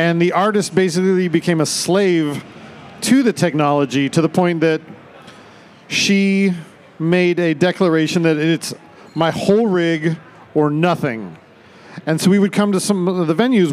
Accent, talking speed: American, 155 wpm